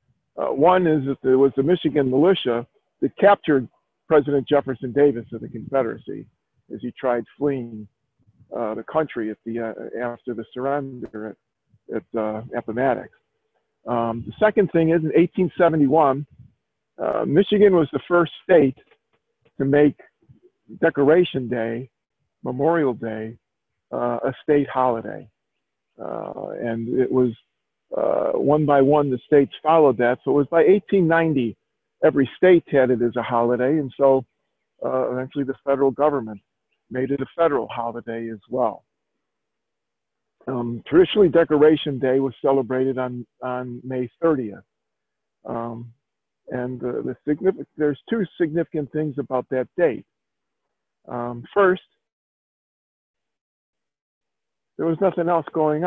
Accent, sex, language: American, male, English